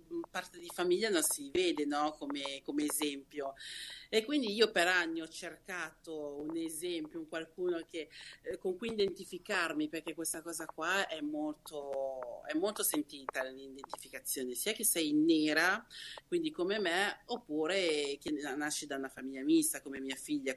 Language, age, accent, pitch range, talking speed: Italian, 40-59, native, 155-225 Hz, 145 wpm